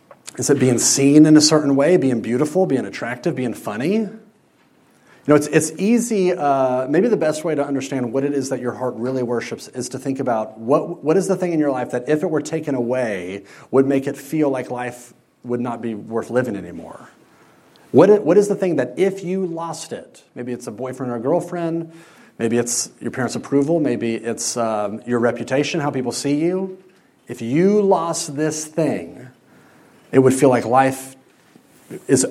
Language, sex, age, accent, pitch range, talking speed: English, male, 30-49, American, 125-170 Hz, 200 wpm